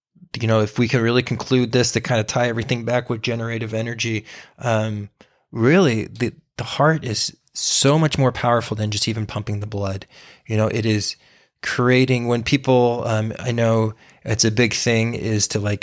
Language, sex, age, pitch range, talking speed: English, male, 20-39, 110-125 Hz, 190 wpm